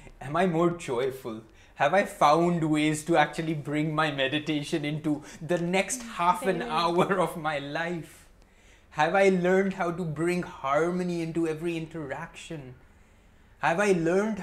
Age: 20-39